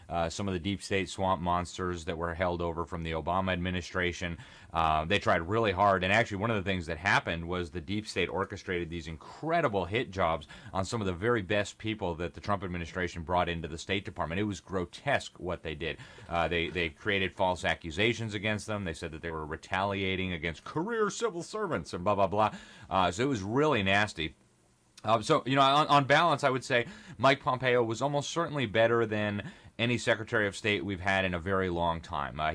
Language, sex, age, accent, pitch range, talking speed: English, male, 30-49, American, 85-115 Hz, 215 wpm